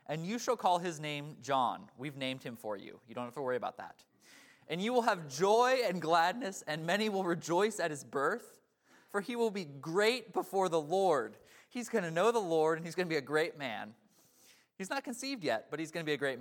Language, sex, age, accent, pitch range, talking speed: English, male, 20-39, American, 145-215 Hz, 240 wpm